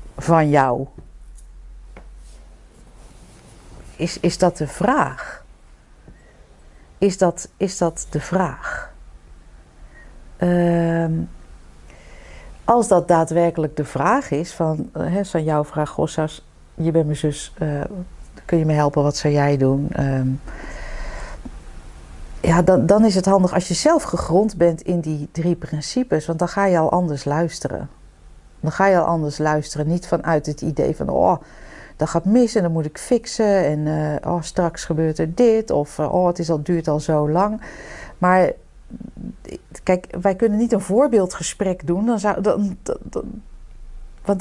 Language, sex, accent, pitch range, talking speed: Dutch, female, Dutch, 145-185 Hz, 150 wpm